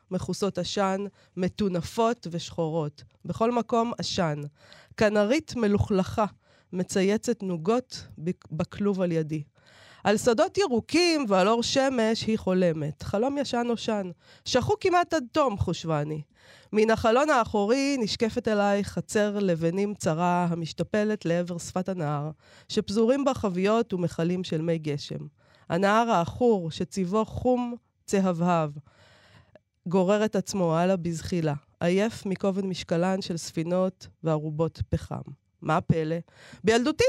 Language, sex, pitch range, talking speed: Hebrew, female, 170-230 Hz, 110 wpm